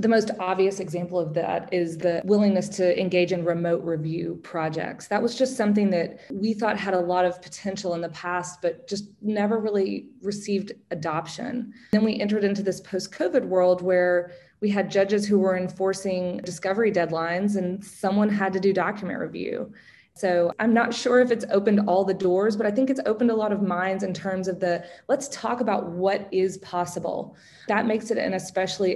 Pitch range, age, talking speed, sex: 175-205 Hz, 20-39, 195 wpm, female